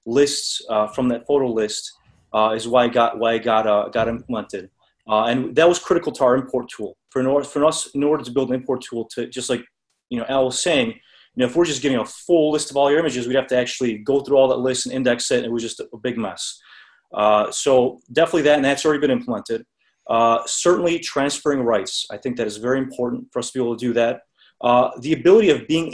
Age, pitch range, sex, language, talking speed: 30-49, 120-150 Hz, male, English, 250 wpm